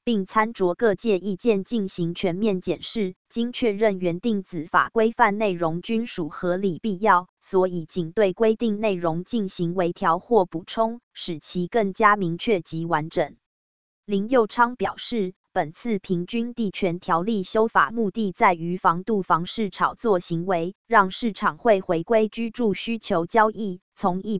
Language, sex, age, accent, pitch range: Chinese, female, 20-39, American, 175-225 Hz